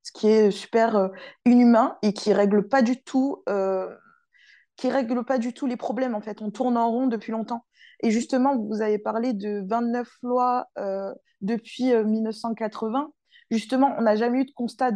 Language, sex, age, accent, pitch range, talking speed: French, female, 20-39, French, 225-270 Hz, 175 wpm